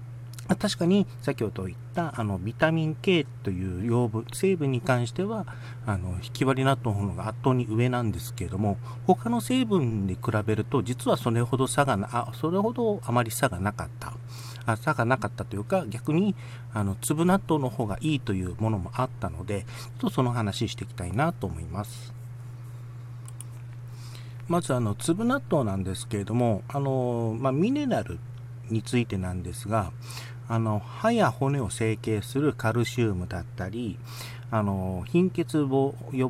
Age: 40-59